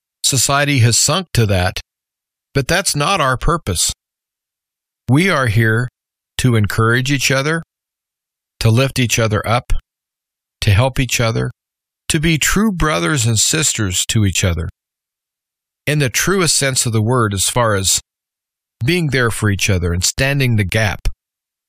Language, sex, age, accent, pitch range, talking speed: English, male, 40-59, American, 110-135 Hz, 150 wpm